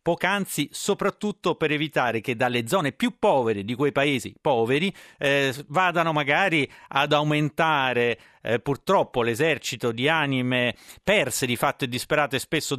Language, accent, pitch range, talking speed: Italian, native, 120-145 Hz, 135 wpm